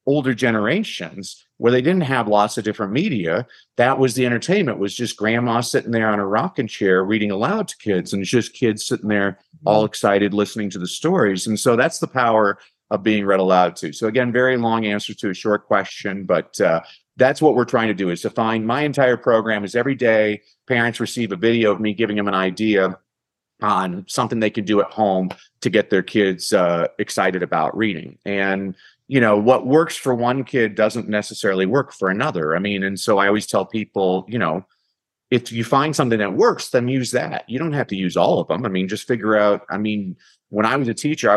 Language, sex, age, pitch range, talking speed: English, male, 40-59, 100-120 Hz, 225 wpm